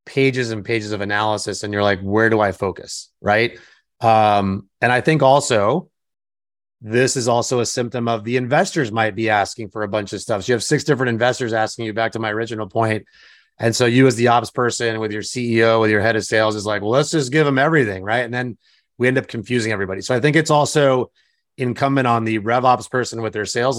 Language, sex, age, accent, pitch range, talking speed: English, male, 30-49, American, 110-130 Hz, 230 wpm